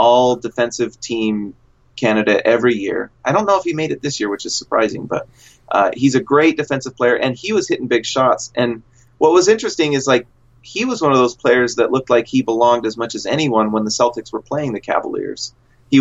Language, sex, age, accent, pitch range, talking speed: English, male, 30-49, American, 115-140 Hz, 225 wpm